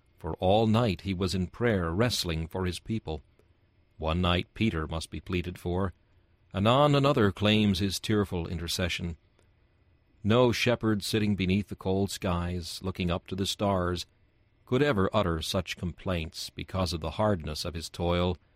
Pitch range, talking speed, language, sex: 85-105 Hz, 155 wpm, English, male